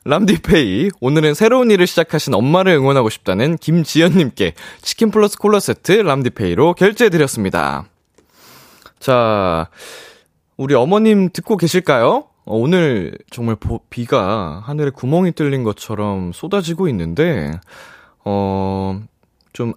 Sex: male